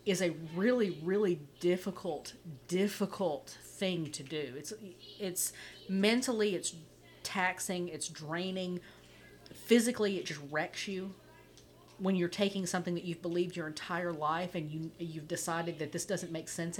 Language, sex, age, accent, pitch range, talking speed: English, female, 40-59, American, 155-215 Hz, 145 wpm